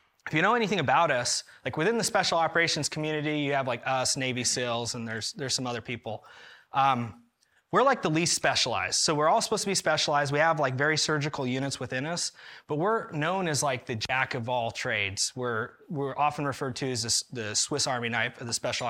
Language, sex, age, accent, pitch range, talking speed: English, male, 20-39, American, 120-150 Hz, 215 wpm